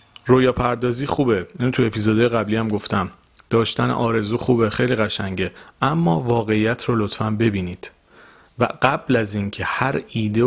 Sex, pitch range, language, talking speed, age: male, 105-120 Hz, Persian, 145 wpm, 30-49